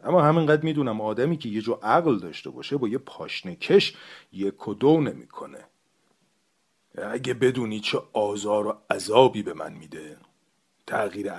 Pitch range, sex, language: 105-125 Hz, male, Persian